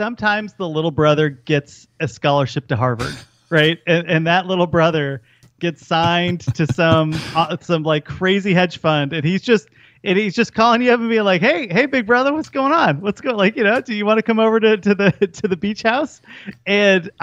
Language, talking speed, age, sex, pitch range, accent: English, 220 wpm, 30-49, male, 135-195 Hz, American